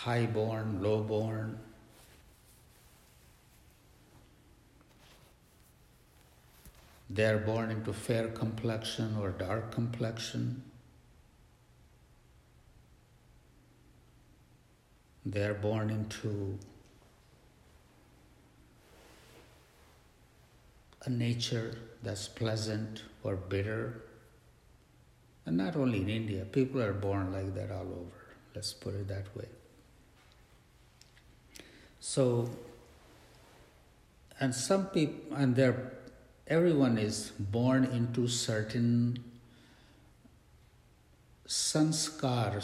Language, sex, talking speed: English, male, 70 wpm